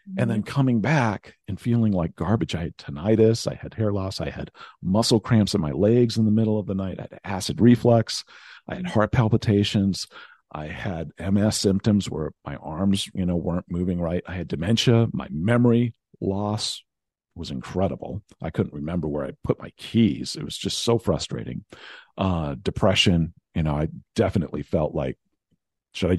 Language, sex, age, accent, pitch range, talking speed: English, male, 50-69, American, 85-115 Hz, 180 wpm